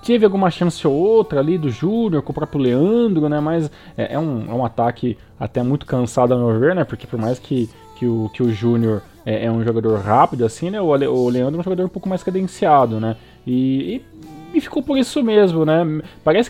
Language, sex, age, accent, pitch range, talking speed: Portuguese, male, 20-39, Brazilian, 120-160 Hz, 220 wpm